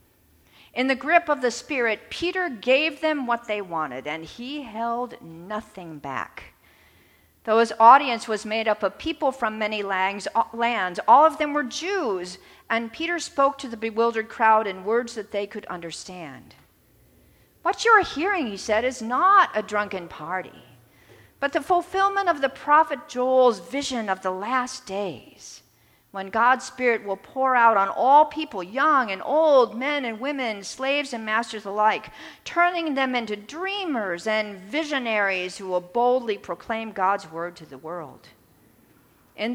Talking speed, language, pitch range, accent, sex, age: 160 wpm, English, 195-270 Hz, American, female, 50-69